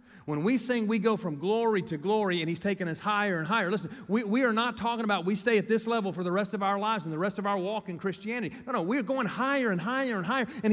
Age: 40-59